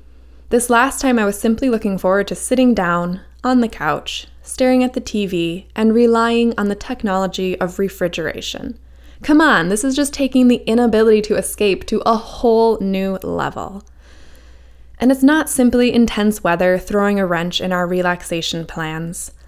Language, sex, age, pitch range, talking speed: English, female, 10-29, 165-225 Hz, 165 wpm